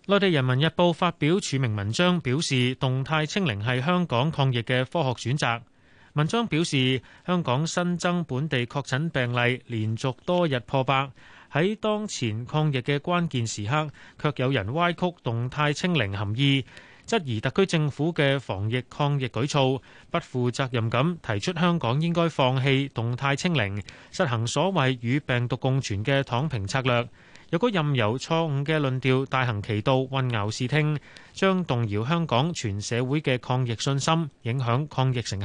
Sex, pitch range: male, 120-160 Hz